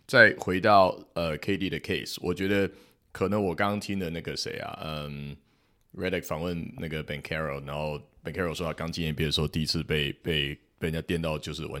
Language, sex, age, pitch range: Chinese, male, 30-49, 75-90 Hz